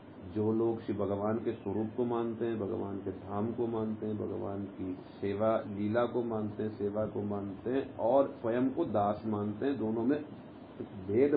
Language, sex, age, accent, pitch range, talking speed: Hindi, male, 50-69, native, 105-140 Hz, 185 wpm